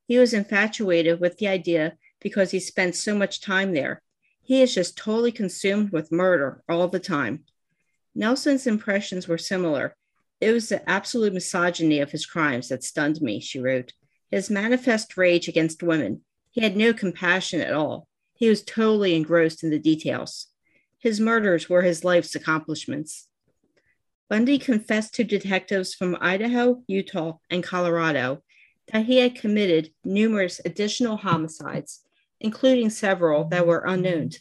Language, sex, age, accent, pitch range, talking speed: English, female, 40-59, American, 165-225 Hz, 150 wpm